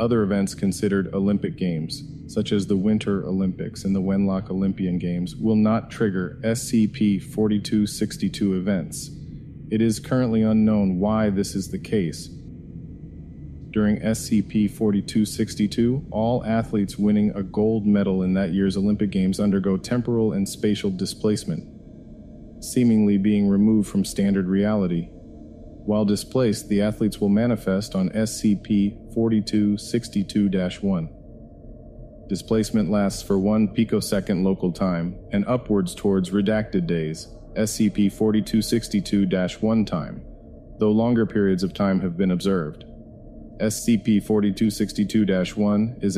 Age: 40-59